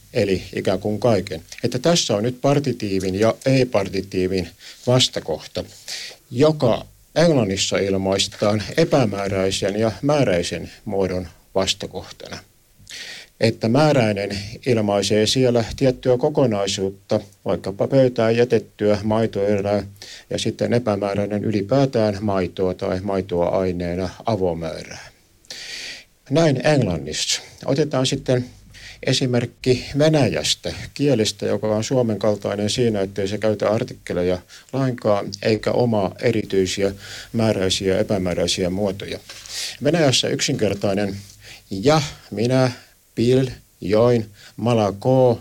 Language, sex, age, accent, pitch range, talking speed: Finnish, male, 50-69, native, 100-125 Hz, 95 wpm